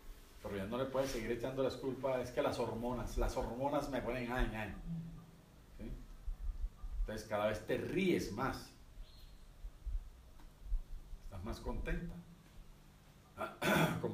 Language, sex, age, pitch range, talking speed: Spanish, male, 40-59, 110-150 Hz, 125 wpm